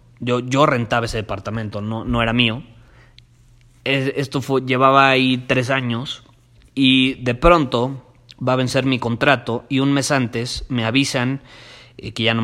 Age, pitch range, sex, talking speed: 30-49, 120-140 Hz, male, 150 wpm